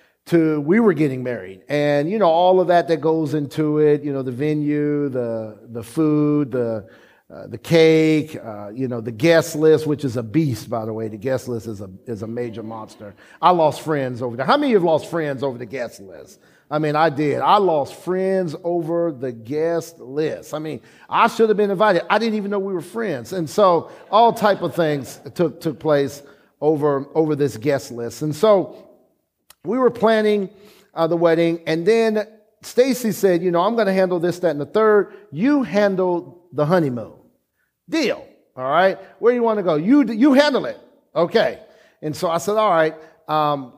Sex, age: male, 40-59